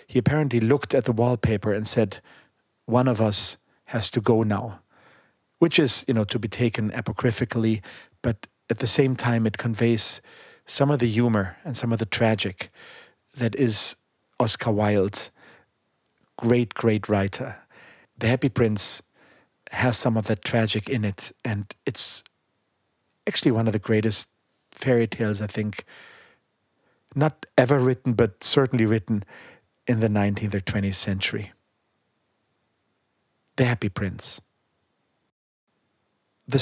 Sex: male